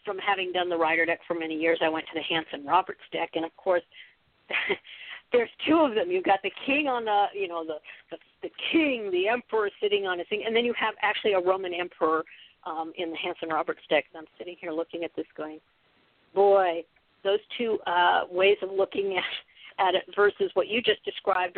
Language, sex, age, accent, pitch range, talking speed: English, female, 50-69, American, 170-210 Hz, 215 wpm